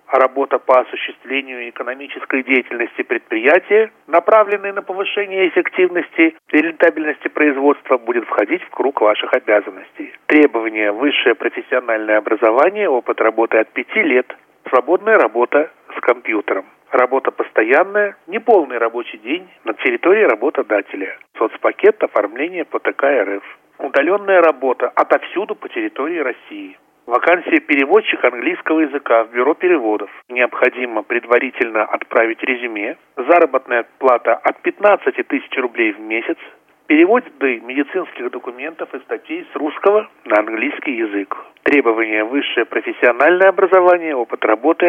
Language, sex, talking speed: Russian, male, 115 wpm